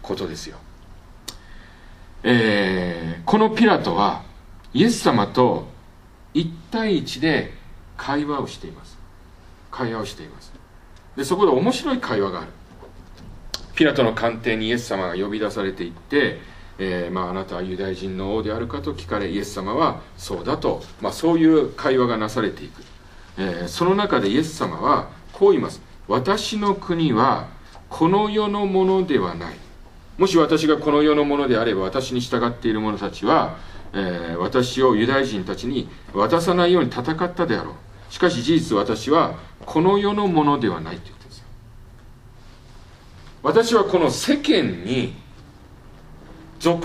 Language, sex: Japanese, male